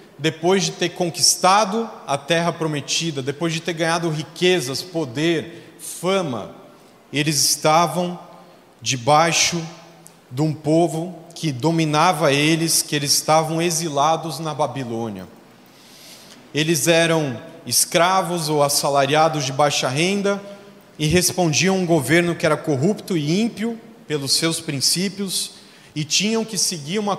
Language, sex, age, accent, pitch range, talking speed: Portuguese, male, 40-59, Brazilian, 155-190 Hz, 120 wpm